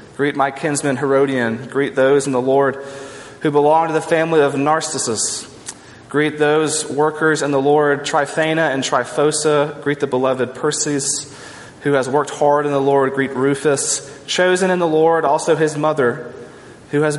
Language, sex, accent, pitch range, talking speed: English, male, American, 135-165 Hz, 165 wpm